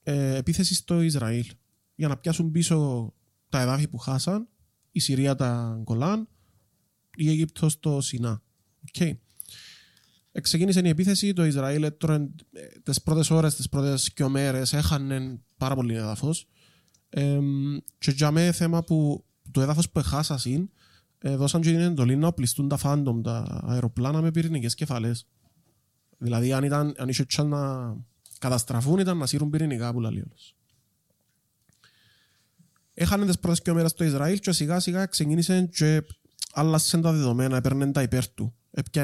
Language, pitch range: Greek, 125-165 Hz